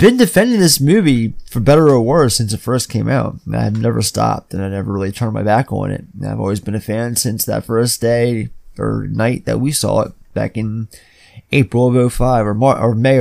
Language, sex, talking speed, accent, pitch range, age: English, male, 225 wpm, American, 100-125 Hz, 20-39